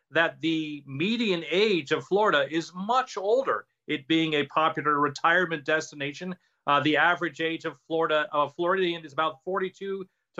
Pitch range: 150-180 Hz